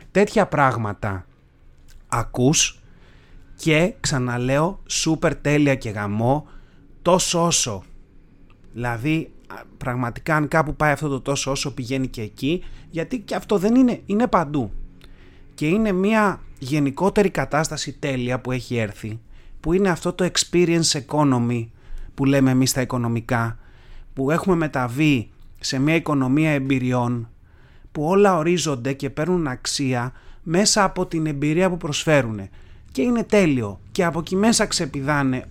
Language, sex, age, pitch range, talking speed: Greek, male, 30-49, 120-155 Hz, 130 wpm